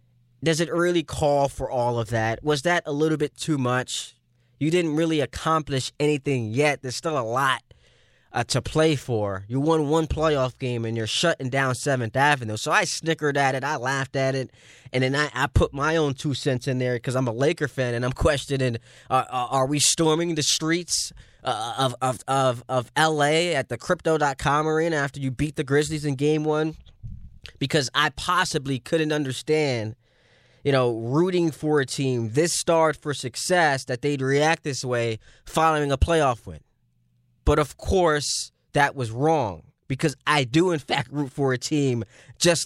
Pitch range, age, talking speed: 130-160 Hz, 20-39, 185 wpm